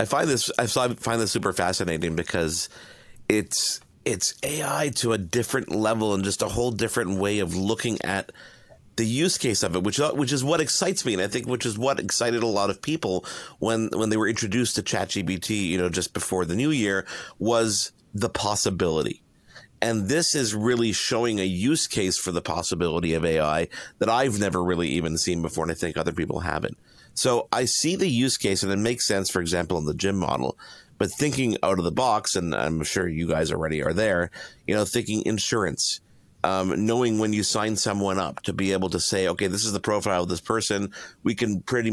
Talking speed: 210 wpm